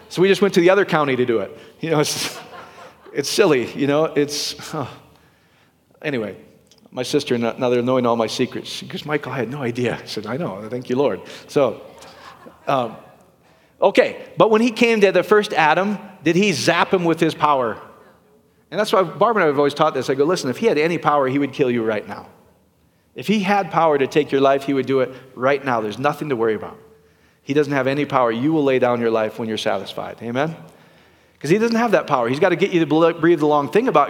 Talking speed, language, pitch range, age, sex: 240 wpm, English, 130-185 Hz, 40-59, male